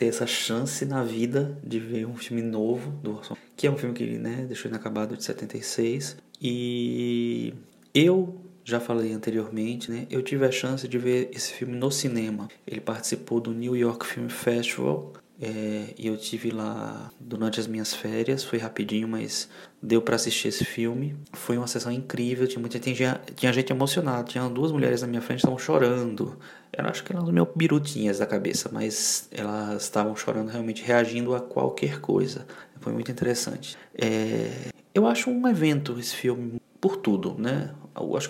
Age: 20-39